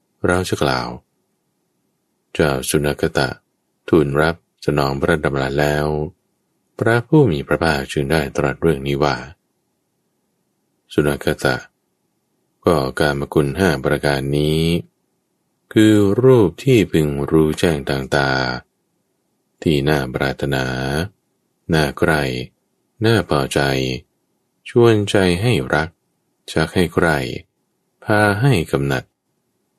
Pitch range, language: 70-95 Hz, English